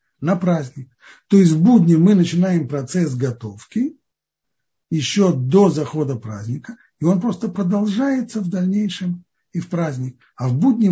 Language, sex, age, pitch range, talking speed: Russian, male, 60-79, 120-175 Hz, 145 wpm